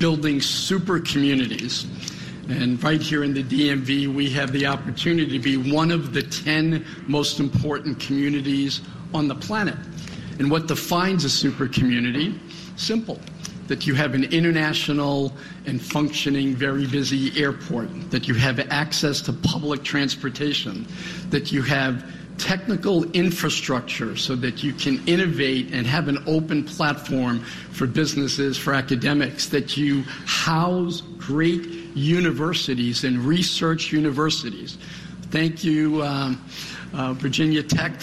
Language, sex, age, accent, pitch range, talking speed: English, male, 70-89, American, 140-165 Hz, 130 wpm